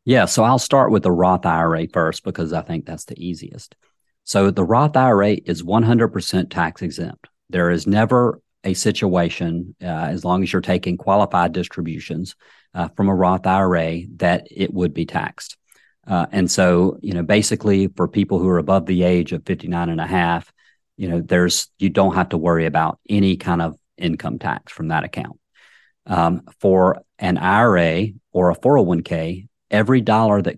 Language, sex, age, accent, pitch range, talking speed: English, male, 40-59, American, 85-100 Hz, 180 wpm